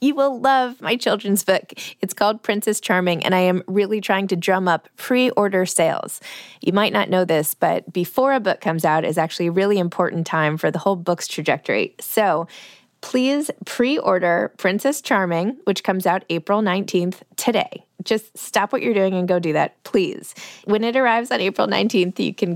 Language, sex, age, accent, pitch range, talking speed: English, female, 20-39, American, 180-225 Hz, 195 wpm